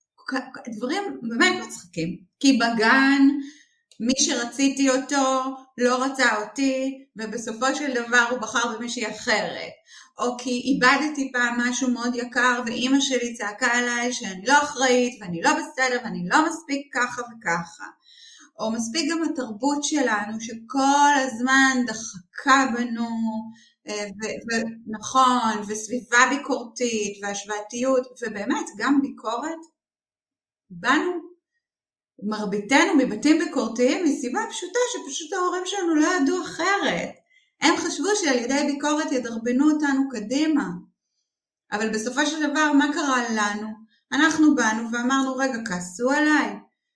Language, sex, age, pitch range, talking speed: Hebrew, female, 30-49, 230-300 Hz, 115 wpm